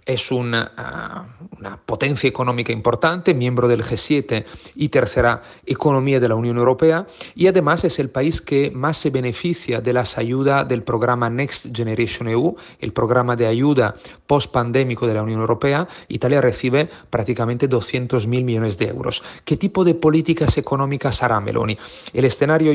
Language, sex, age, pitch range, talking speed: Spanish, male, 40-59, 120-140 Hz, 155 wpm